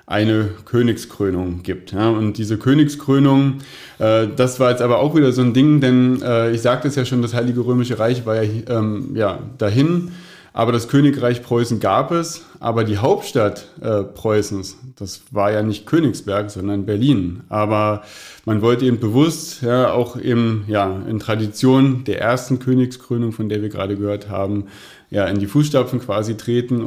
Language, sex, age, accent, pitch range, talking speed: German, male, 30-49, German, 110-130 Hz, 170 wpm